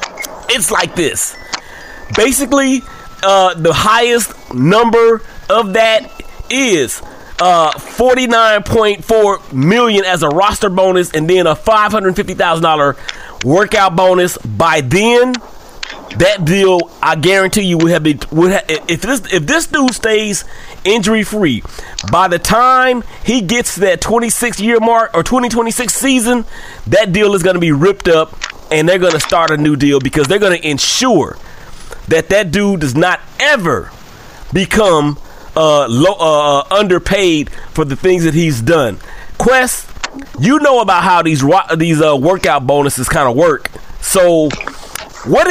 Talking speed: 140 wpm